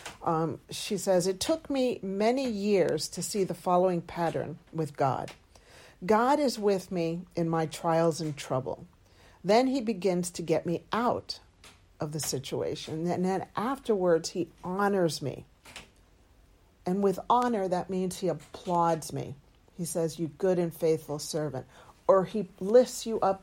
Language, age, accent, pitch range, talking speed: English, 50-69, American, 165-210 Hz, 155 wpm